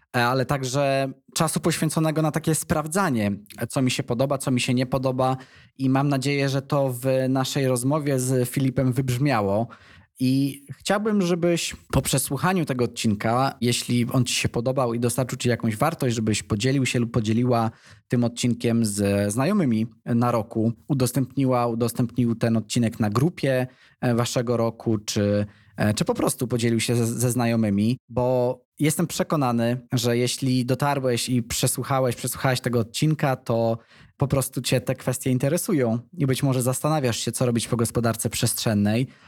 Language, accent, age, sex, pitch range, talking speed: Polish, native, 20-39, male, 115-135 Hz, 150 wpm